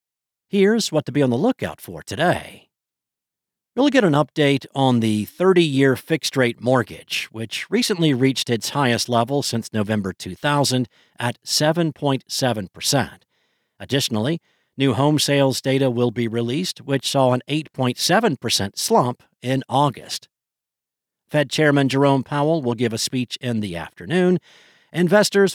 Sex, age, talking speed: male, 50-69, 130 wpm